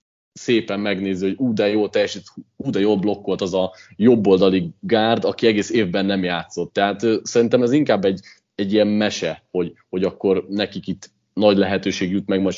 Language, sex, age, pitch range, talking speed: Hungarian, male, 30-49, 95-110 Hz, 180 wpm